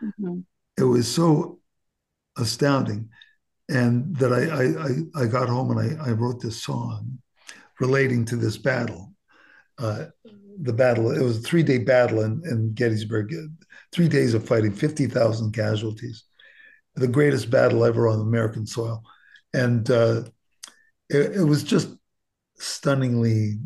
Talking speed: 130 wpm